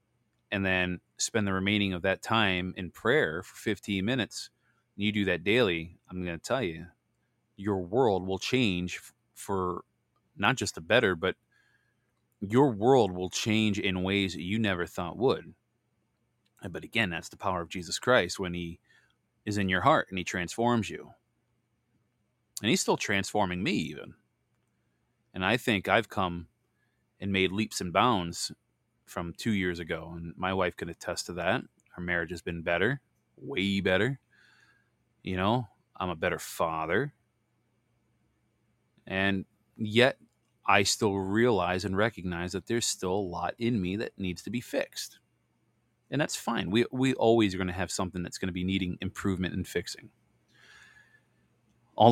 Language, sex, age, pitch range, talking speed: English, male, 30-49, 90-110 Hz, 160 wpm